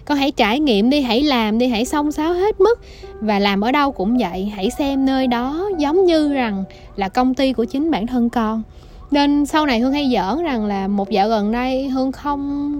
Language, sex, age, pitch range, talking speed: Vietnamese, female, 20-39, 205-285 Hz, 225 wpm